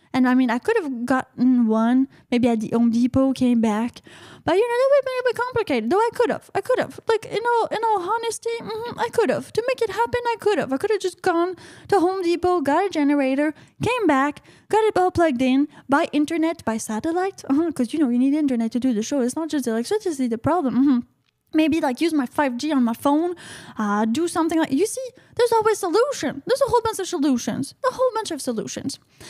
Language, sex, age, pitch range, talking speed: English, female, 10-29, 270-415 Hz, 240 wpm